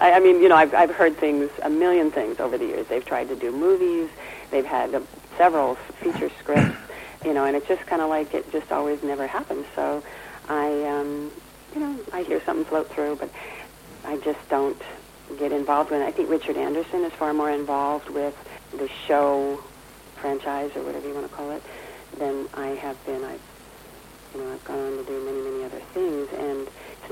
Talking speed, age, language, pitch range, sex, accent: 205 wpm, 50-69, English, 135-170 Hz, female, American